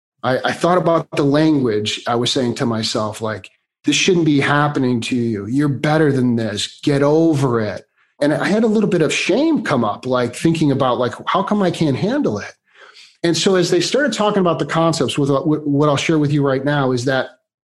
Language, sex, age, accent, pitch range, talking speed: English, male, 40-59, American, 135-175 Hz, 215 wpm